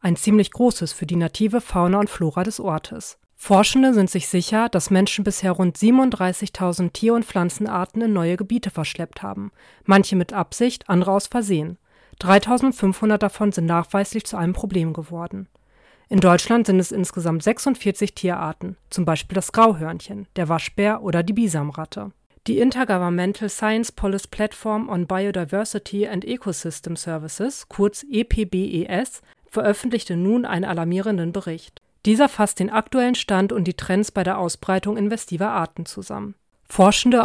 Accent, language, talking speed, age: German, German, 145 wpm, 40-59